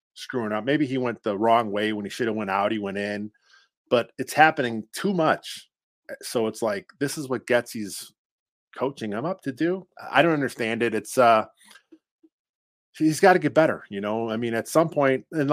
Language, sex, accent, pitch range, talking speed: English, male, American, 115-155 Hz, 205 wpm